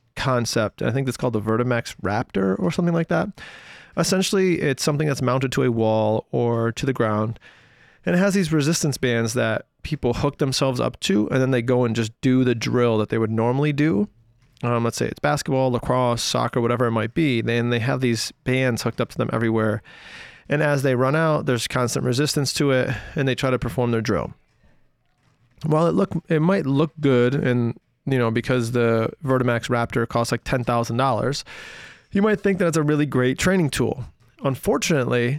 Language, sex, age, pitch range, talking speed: English, male, 30-49, 120-145 Hz, 195 wpm